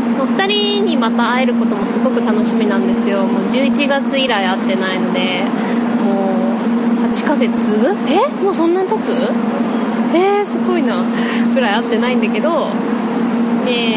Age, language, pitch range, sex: 20-39, Japanese, 230-245 Hz, female